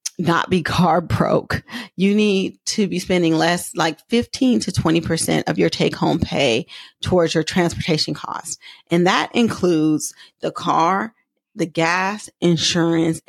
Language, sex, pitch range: English, female, 165-195 Hz